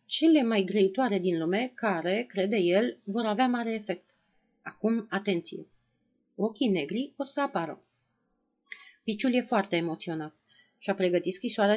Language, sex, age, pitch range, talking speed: Romanian, female, 30-49, 175-245 Hz, 135 wpm